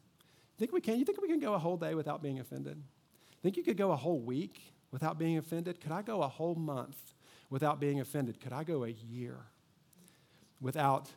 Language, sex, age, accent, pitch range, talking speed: English, male, 40-59, American, 130-170 Hz, 210 wpm